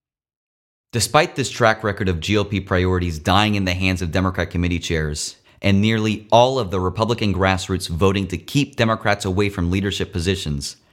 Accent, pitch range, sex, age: American, 95-115 Hz, male, 30-49